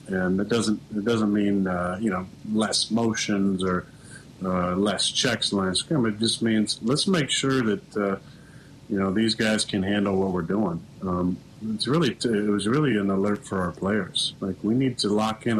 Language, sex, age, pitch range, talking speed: English, male, 40-59, 95-115 Hz, 190 wpm